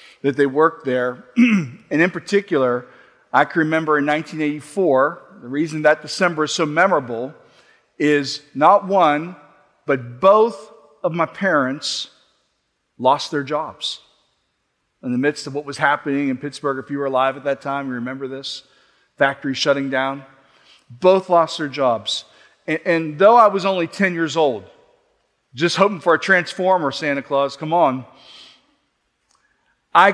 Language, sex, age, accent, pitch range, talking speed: English, male, 40-59, American, 140-175 Hz, 150 wpm